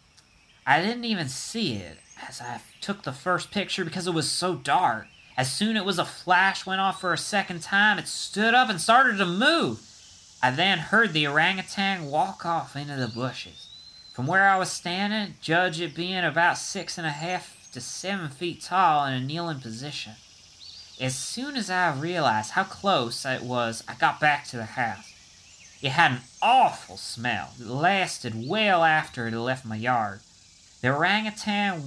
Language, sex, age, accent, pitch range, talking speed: English, male, 30-49, American, 130-215 Hz, 185 wpm